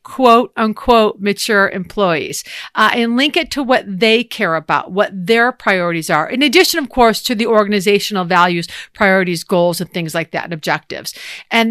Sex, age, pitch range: female, 50-69, 195-255 Hz